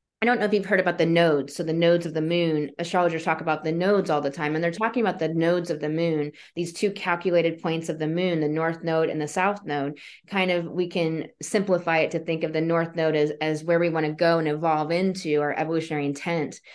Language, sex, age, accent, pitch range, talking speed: English, female, 20-39, American, 160-185 Hz, 250 wpm